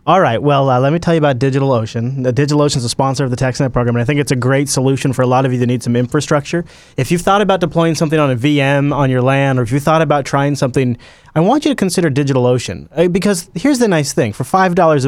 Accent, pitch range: American, 125-155 Hz